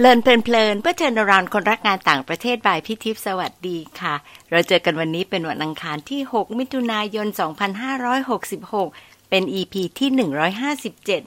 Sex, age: female, 60-79